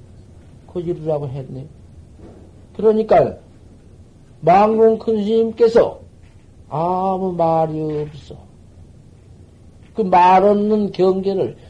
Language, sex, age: Korean, male, 50-69